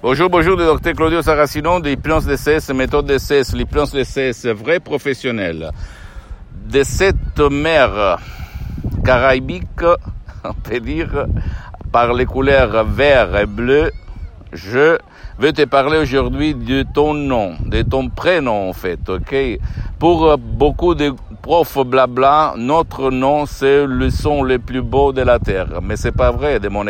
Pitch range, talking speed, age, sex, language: 100-135 Hz, 150 wpm, 60-79, male, Italian